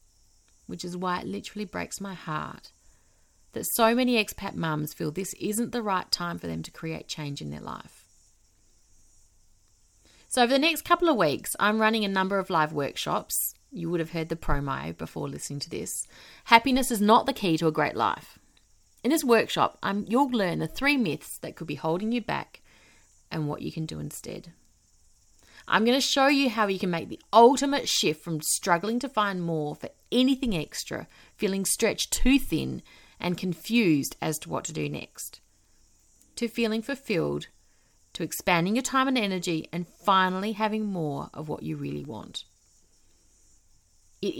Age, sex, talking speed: 30-49, female, 175 wpm